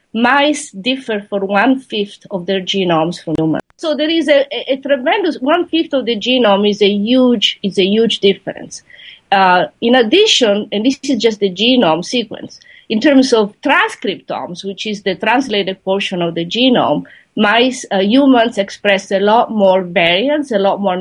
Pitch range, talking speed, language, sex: 195-260 Hz, 170 wpm, English, female